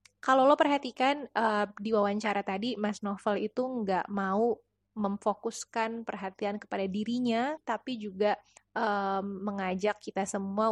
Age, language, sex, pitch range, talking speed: 20-39, Indonesian, female, 200-235 Hz, 110 wpm